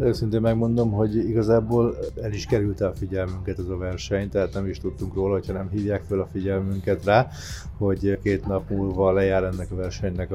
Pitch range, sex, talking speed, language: 95-110 Hz, male, 185 wpm, Hungarian